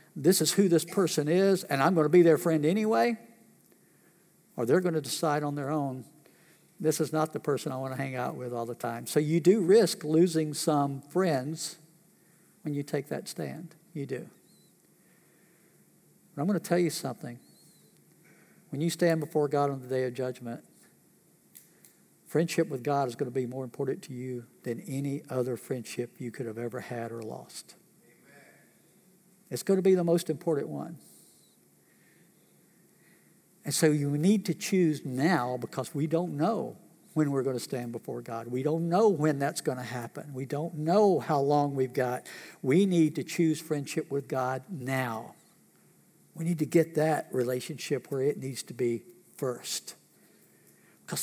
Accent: American